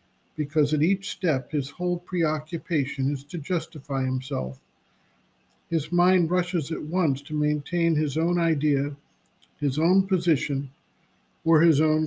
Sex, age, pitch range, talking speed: male, 50-69, 145-170 Hz, 135 wpm